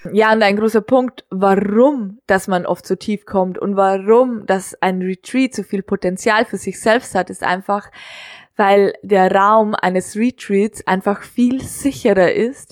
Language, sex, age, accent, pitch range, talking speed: German, female, 20-39, German, 195-225 Hz, 165 wpm